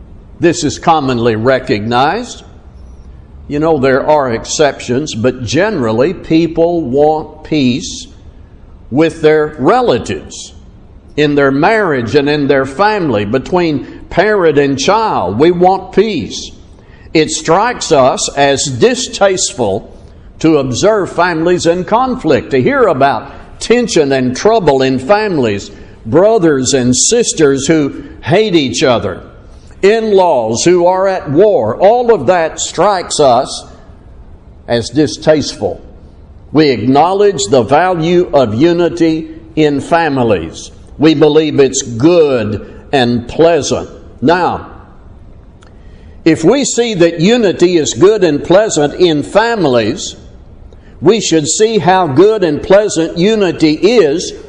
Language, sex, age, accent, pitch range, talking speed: English, male, 60-79, American, 125-175 Hz, 115 wpm